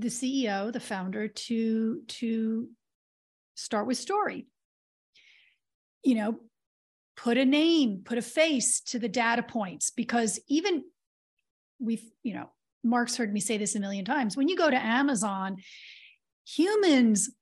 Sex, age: female, 40-59